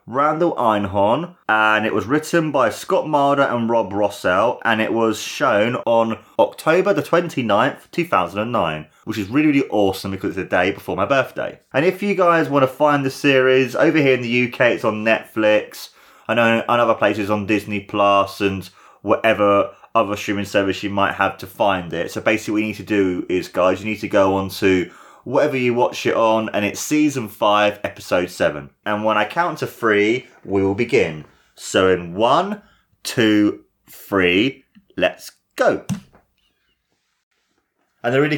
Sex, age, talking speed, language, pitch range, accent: male, 20-39, 180 wpm, English, 100-125 Hz, British